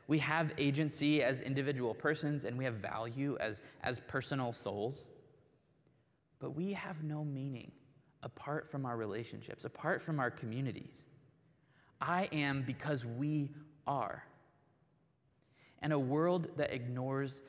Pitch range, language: 125-155 Hz, English